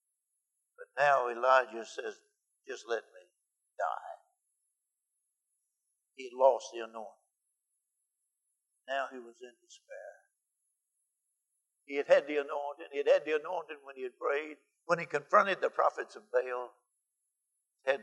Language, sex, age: English, male, 60-79